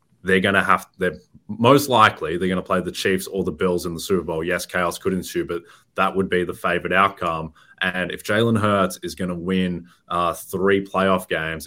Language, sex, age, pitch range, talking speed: English, male, 20-39, 90-100 Hz, 220 wpm